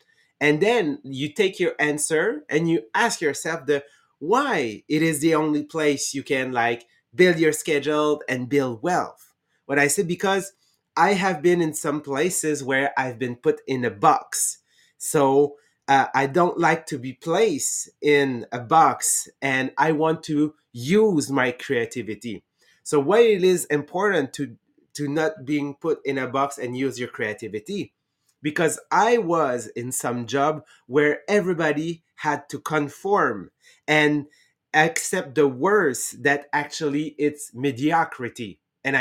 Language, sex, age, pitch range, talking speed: English, male, 30-49, 135-165 Hz, 150 wpm